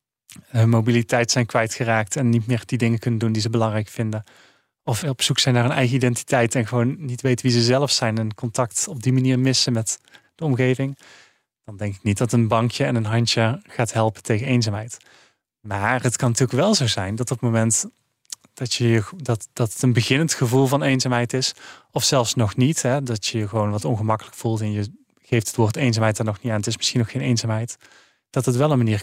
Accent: Dutch